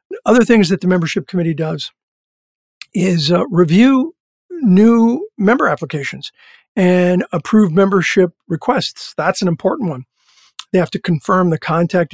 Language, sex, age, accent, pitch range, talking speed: English, male, 50-69, American, 165-200 Hz, 135 wpm